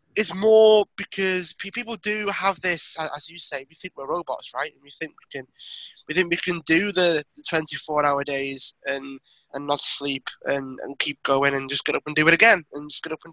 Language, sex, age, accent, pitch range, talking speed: English, male, 20-39, British, 150-185 Hz, 225 wpm